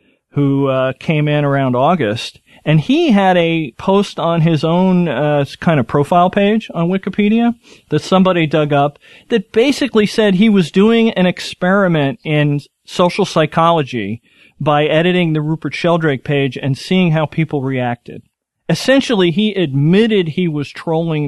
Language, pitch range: English, 140-185 Hz